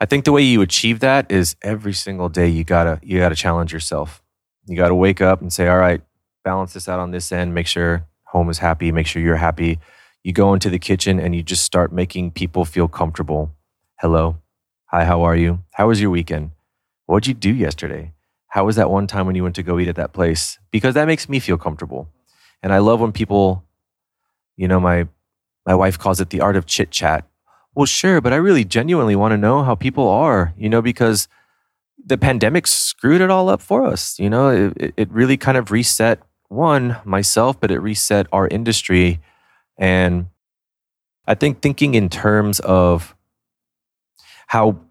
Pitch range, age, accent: 85-110 Hz, 30-49, American